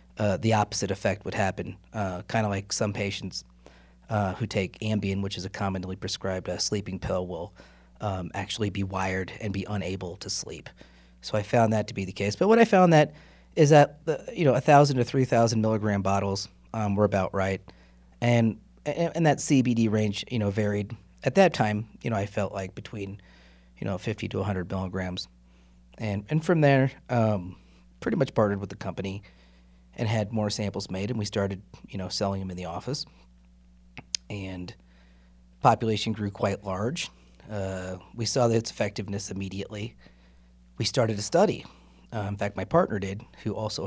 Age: 30-49